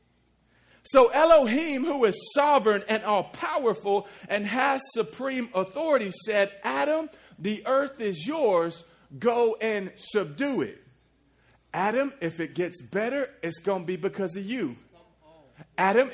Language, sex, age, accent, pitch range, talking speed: English, male, 40-59, American, 185-245 Hz, 125 wpm